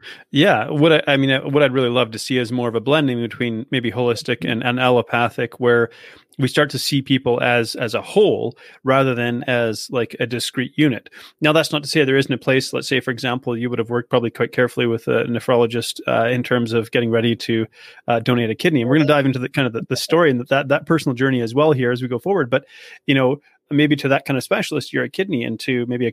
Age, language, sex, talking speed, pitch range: 30-49, English, male, 260 wpm, 120-140 Hz